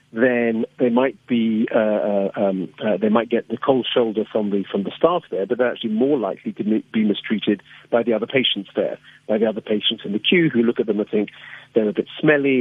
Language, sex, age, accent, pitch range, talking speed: English, male, 40-59, British, 100-125 Hz, 235 wpm